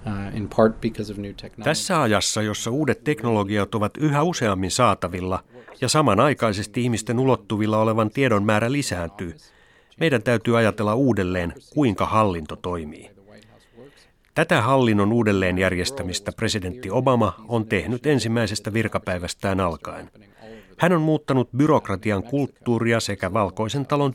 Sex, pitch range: male, 100-130 Hz